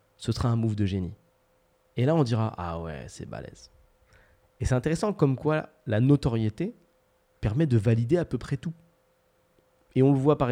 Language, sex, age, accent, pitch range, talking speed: French, male, 30-49, French, 105-130 Hz, 200 wpm